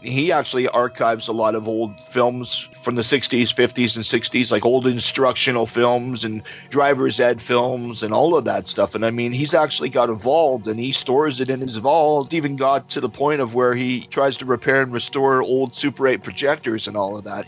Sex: male